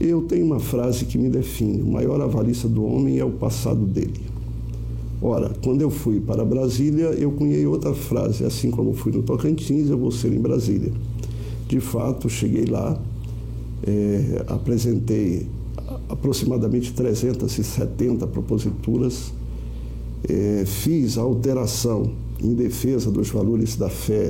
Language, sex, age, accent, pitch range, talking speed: Portuguese, male, 50-69, Brazilian, 105-130 Hz, 130 wpm